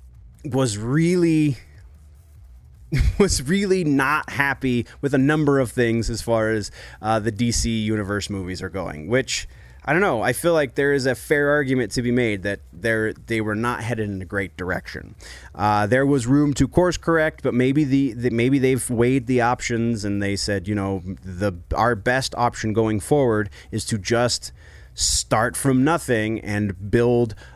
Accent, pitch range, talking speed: American, 105-135 Hz, 175 wpm